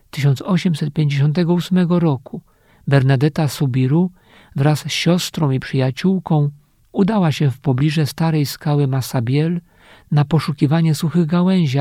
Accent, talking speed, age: native, 100 wpm, 50-69